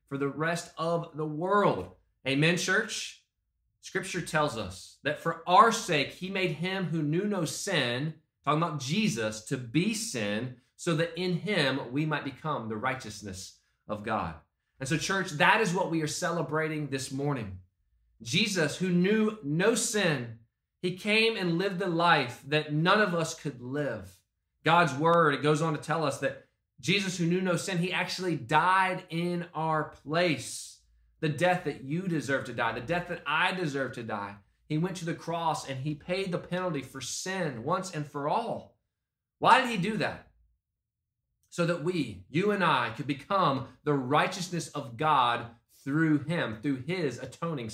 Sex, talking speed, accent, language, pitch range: male, 175 wpm, American, English, 130-175 Hz